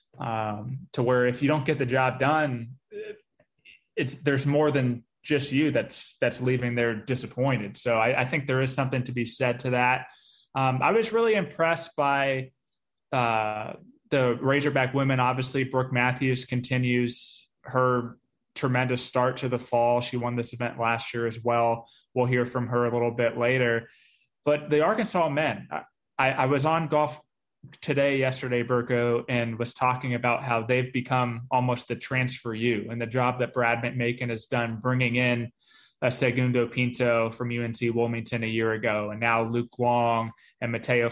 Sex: male